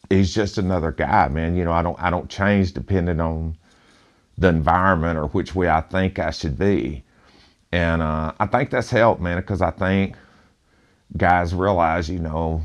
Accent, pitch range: American, 80-100 Hz